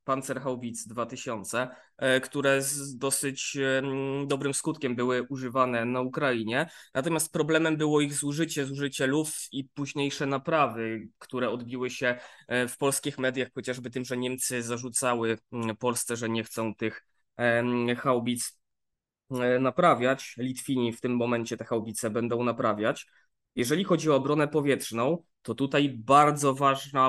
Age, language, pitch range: 20-39, Polish, 125-145 Hz